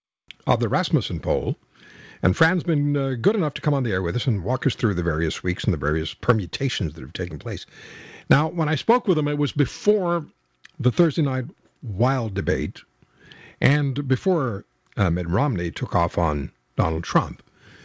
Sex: male